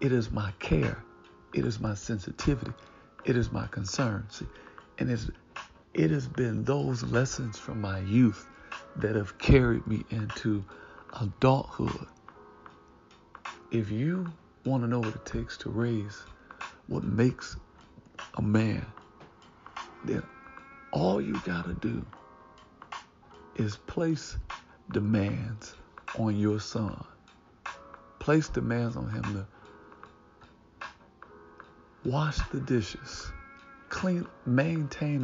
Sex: male